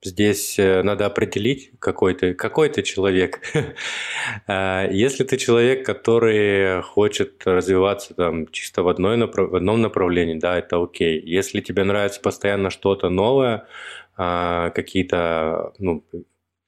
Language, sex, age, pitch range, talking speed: Russian, male, 20-39, 90-105 Hz, 120 wpm